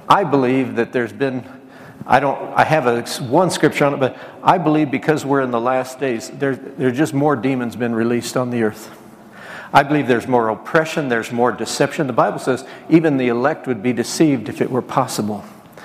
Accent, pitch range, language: American, 125-150 Hz, English